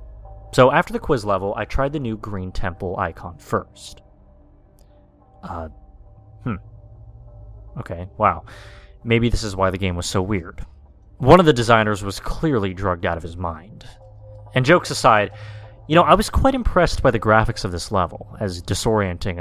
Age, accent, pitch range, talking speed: 30-49, American, 95-115 Hz, 165 wpm